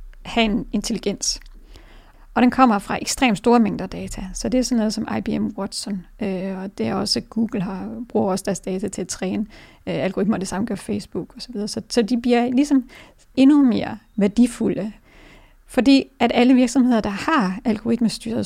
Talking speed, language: 185 wpm, Danish